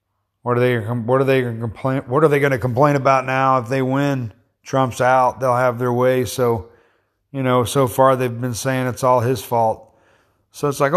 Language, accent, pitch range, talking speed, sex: English, American, 100-125 Hz, 220 wpm, male